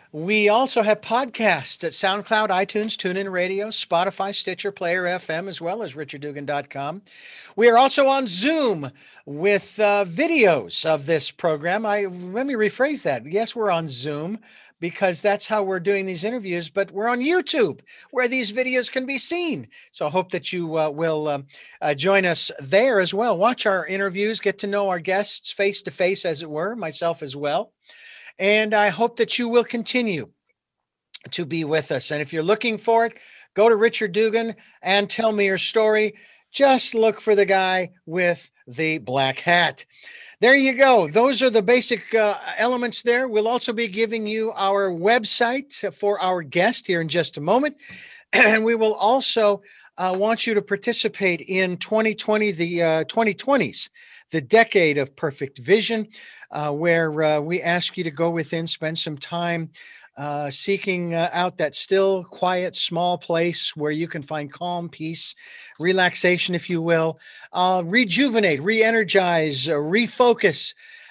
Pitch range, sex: 170-225 Hz, male